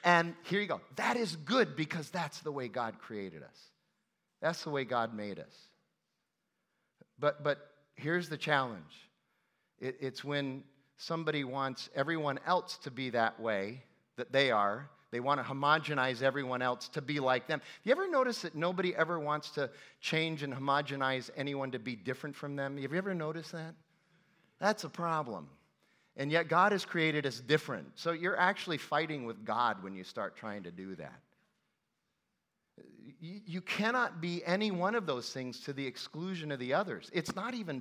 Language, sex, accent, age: English, male, American, 50-69